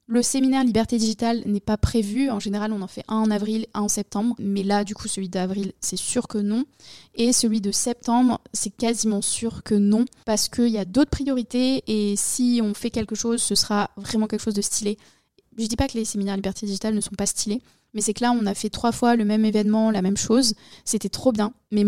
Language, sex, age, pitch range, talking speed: French, female, 20-39, 210-250 Hz, 240 wpm